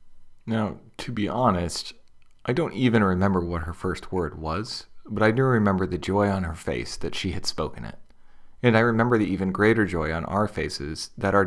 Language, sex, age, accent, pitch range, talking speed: English, male, 40-59, American, 85-105 Hz, 205 wpm